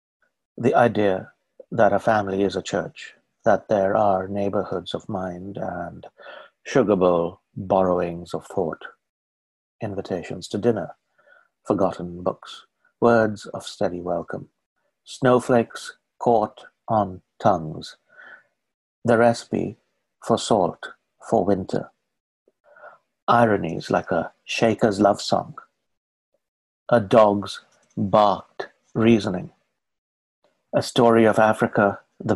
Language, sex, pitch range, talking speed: English, male, 90-115 Hz, 100 wpm